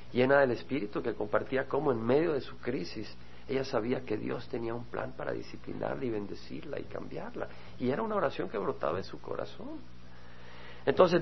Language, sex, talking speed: Spanish, male, 180 wpm